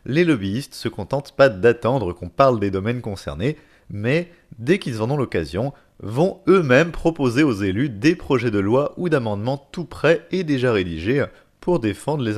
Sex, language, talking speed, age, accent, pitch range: male, French, 180 wpm, 30-49, French, 110-155 Hz